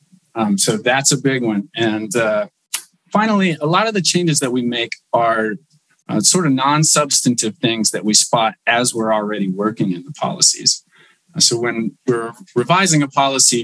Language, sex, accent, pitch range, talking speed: English, male, American, 110-160 Hz, 175 wpm